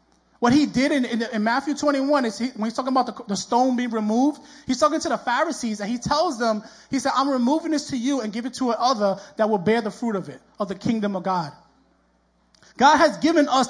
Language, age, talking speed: English, 20-39, 240 wpm